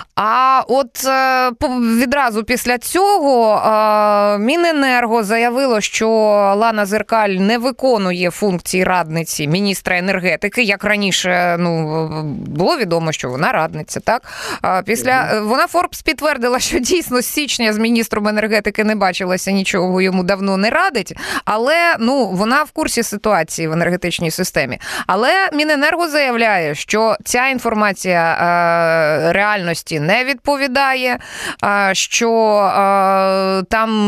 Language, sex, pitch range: Ukrainian, female, 190-245 Hz